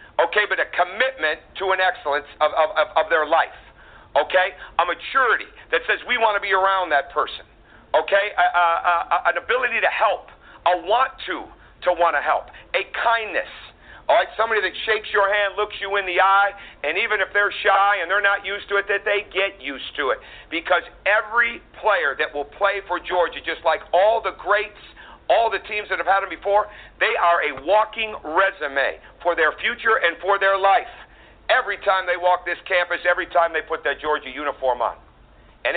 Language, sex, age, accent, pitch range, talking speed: English, male, 50-69, American, 160-200 Hz, 200 wpm